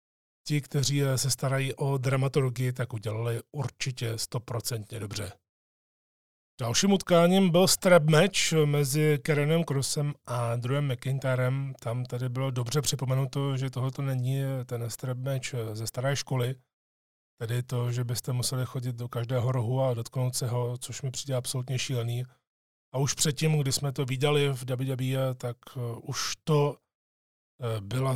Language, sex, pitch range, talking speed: Czech, male, 115-140 Hz, 145 wpm